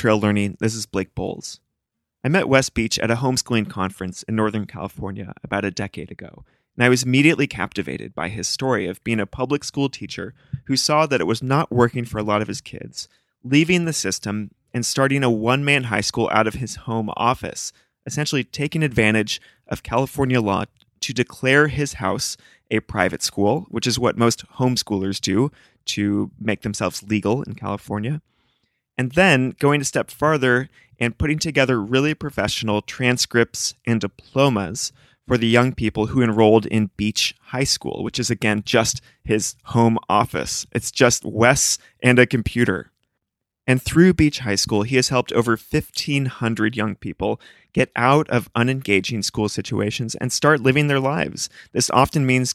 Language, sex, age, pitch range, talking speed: English, male, 30-49, 105-135 Hz, 170 wpm